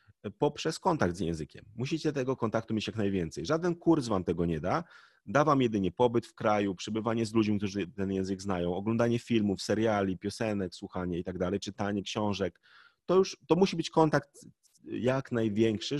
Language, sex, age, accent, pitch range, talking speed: Polish, male, 30-49, native, 100-140 Hz, 165 wpm